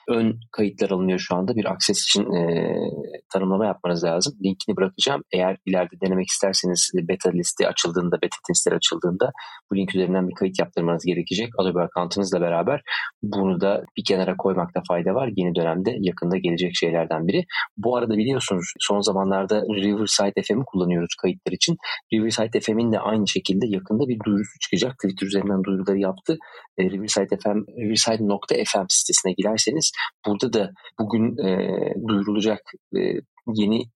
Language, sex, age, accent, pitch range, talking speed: Turkish, male, 30-49, native, 95-110 Hz, 145 wpm